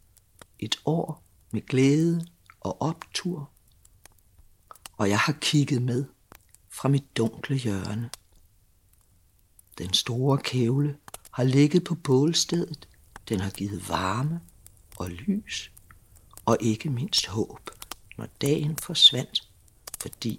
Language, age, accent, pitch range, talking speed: Danish, 60-79, native, 115-160 Hz, 105 wpm